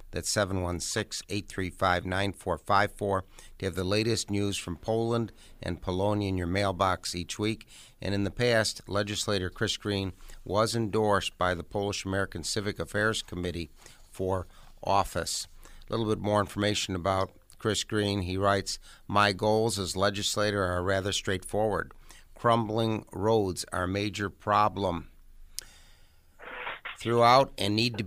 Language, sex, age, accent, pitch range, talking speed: English, male, 50-69, American, 90-105 Hz, 130 wpm